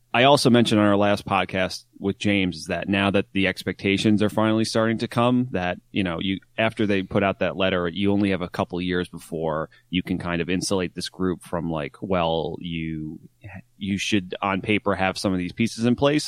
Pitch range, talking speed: 90-110 Hz, 220 wpm